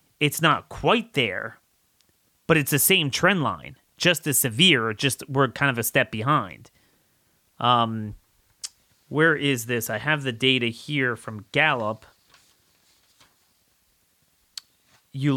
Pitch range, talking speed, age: 120-155 Hz, 125 wpm, 30-49